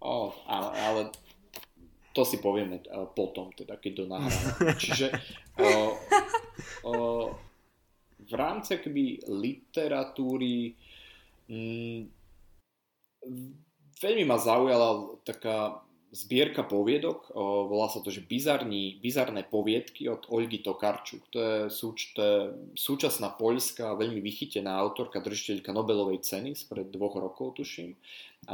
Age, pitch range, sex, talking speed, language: 30-49, 100-130 Hz, male, 110 wpm, Slovak